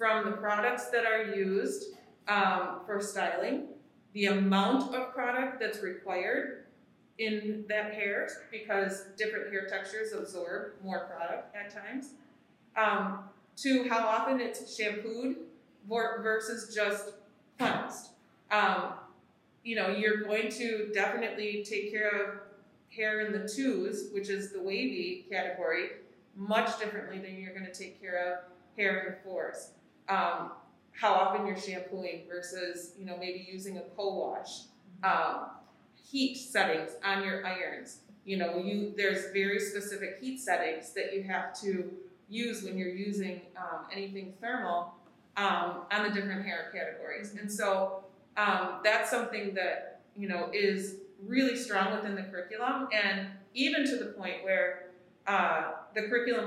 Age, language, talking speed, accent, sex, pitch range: 30-49, English, 140 wpm, American, female, 190-220 Hz